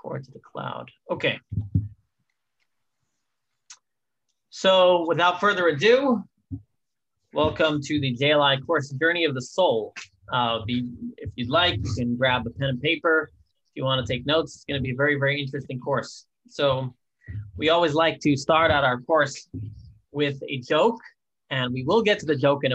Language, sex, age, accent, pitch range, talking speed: English, male, 20-39, American, 125-160 Hz, 165 wpm